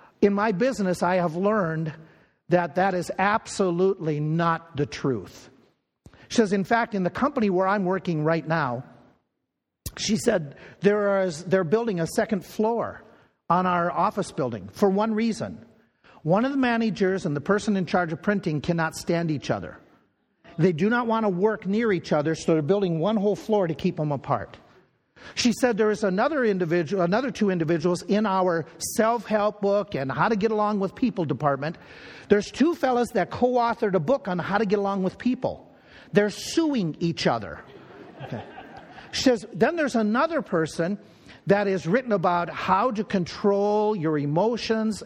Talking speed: 170 wpm